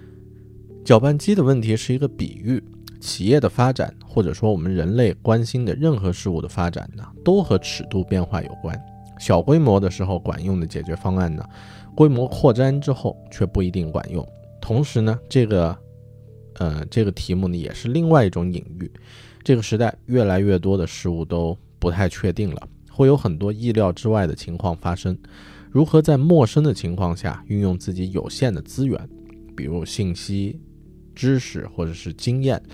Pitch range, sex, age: 90-120 Hz, male, 20-39